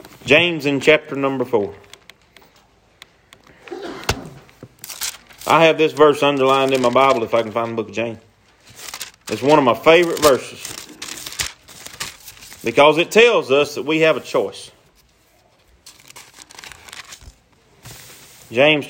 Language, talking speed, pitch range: English, 120 wpm, 125-200 Hz